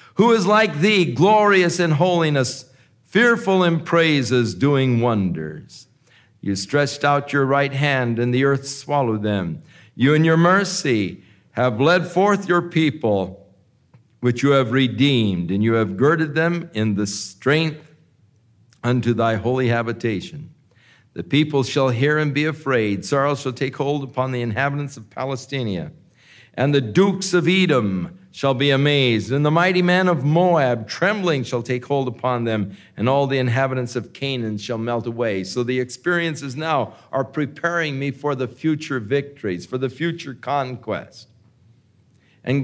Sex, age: male, 50-69